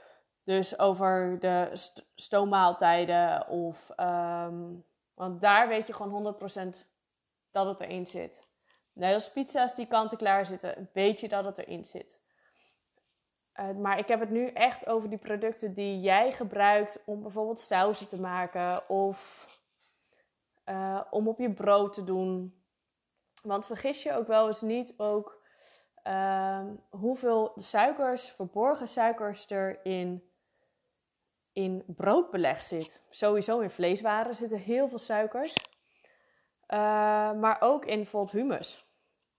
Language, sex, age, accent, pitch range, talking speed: Dutch, female, 20-39, Dutch, 195-230 Hz, 130 wpm